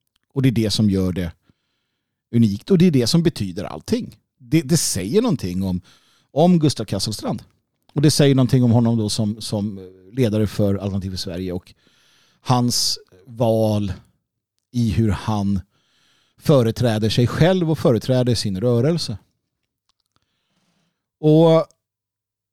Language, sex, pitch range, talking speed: Swedish, male, 105-155 Hz, 135 wpm